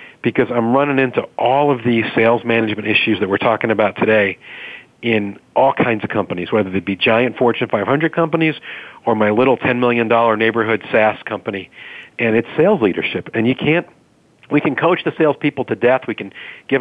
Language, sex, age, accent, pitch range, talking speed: English, male, 40-59, American, 110-140 Hz, 190 wpm